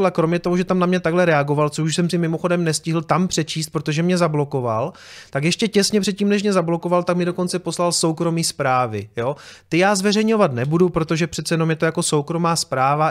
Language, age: Czech, 30-49